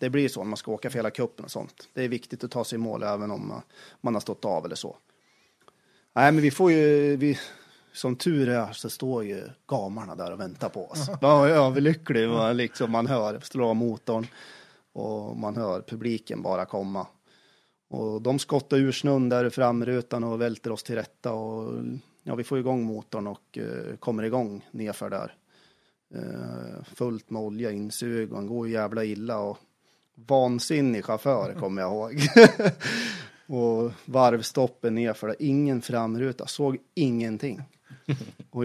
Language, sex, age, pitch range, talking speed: Swedish, male, 30-49, 110-130 Hz, 170 wpm